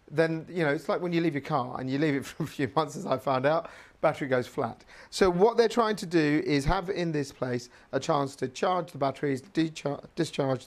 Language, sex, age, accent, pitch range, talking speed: English, male, 40-59, British, 130-175 Hz, 240 wpm